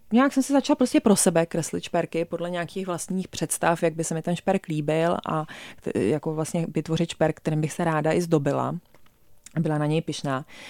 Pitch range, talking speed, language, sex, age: 170-205 Hz, 195 wpm, Czech, female, 20-39